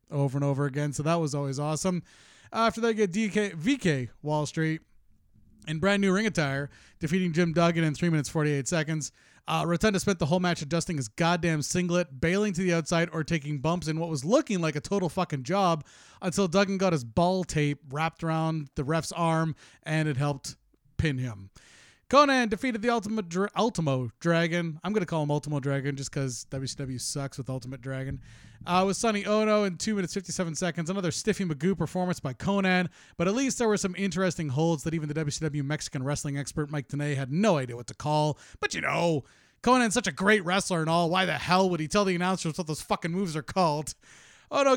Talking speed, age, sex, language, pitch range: 205 wpm, 30-49, male, English, 150-195 Hz